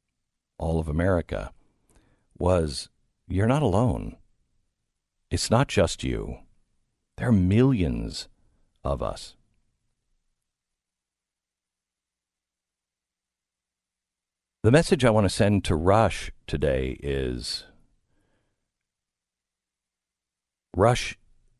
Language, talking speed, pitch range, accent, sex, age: English, 75 wpm, 75-110 Hz, American, male, 50-69